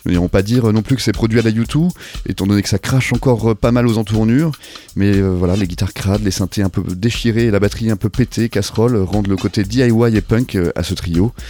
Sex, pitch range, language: male, 95-120 Hz, French